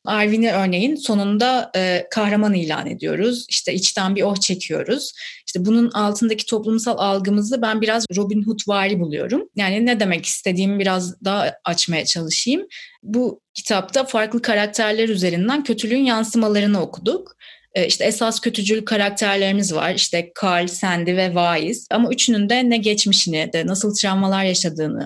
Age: 30-49